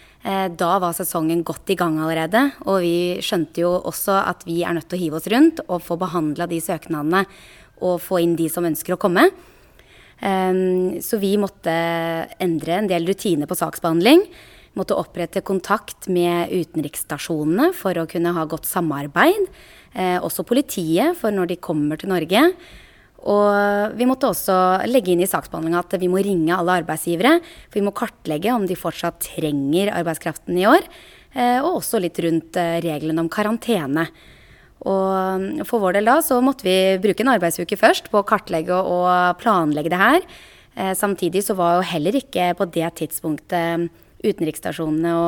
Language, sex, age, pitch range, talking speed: English, female, 20-39, 165-205 Hz, 160 wpm